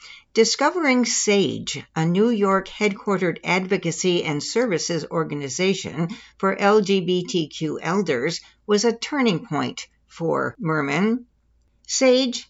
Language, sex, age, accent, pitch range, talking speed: English, female, 60-79, American, 170-230 Hz, 95 wpm